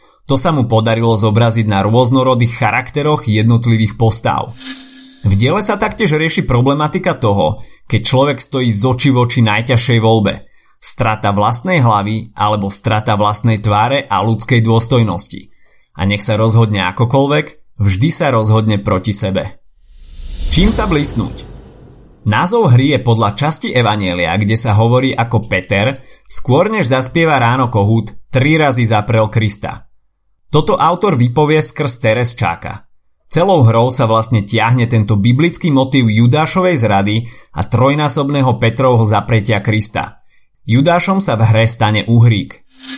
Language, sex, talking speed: Slovak, male, 135 wpm